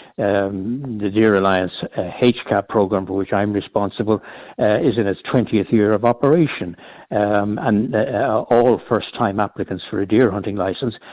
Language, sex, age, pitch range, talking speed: English, male, 60-79, 100-120 Hz, 160 wpm